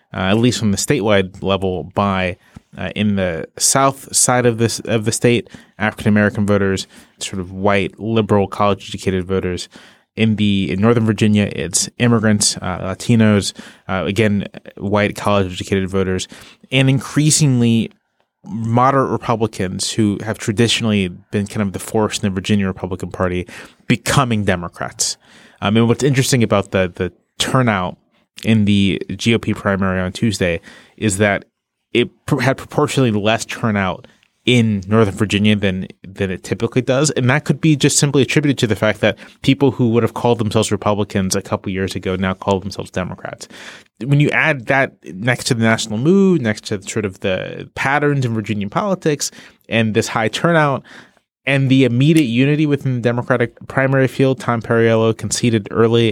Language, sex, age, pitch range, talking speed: English, male, 20-39, 100-120 Hz, 165 wpm